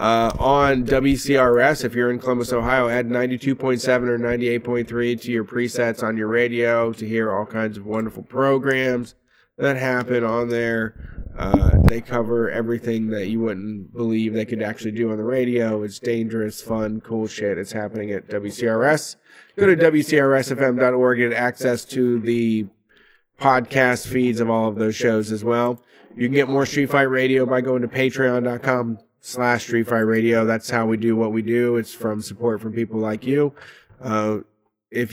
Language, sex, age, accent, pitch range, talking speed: English, male, 30-49, American, 115-125 Hz, 175 wpm